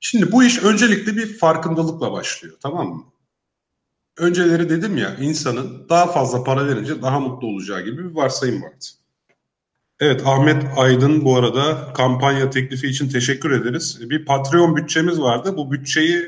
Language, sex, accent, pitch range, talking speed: Turkish, male, native, 110-140 Hz, 150 wpm